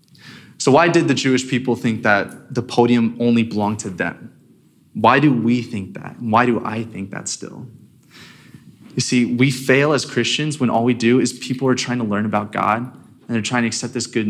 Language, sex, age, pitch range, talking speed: English, male, 20-39, 110-135 Hz, 210 wpm